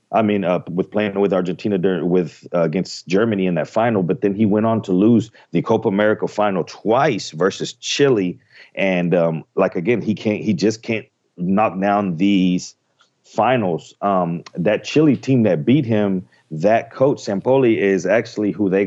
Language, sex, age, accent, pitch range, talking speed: English, male, 40-59, American, 90-105 Hz, 180 wpm